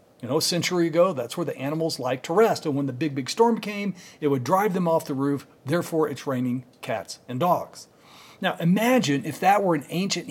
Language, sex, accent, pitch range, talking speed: English, male, American, 140-190 Hz, 225 wpm